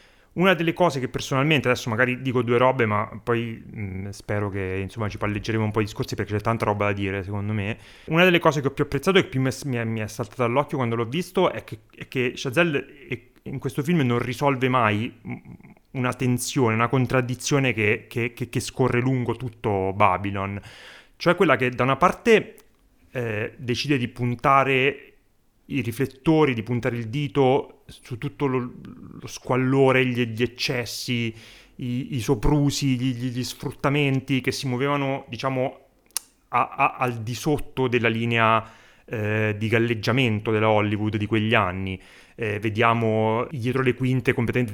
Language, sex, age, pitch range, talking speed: Italian, male, 30-49, 110-135 Hz, 160 wpm